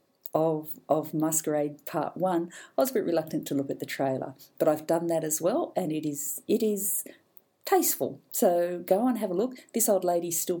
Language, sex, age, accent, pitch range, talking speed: English, female, 50-69, Australian, 145-175 Hz, 210 wpm